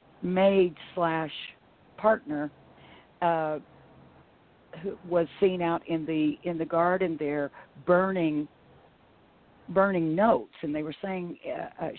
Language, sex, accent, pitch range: English, female, American, 155-190 Hz